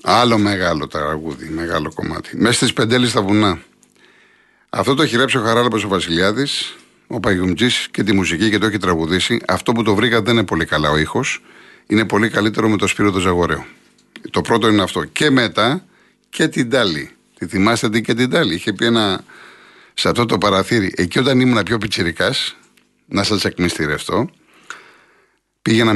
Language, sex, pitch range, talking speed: Greek, male, 90-120 Hz, 170 wpm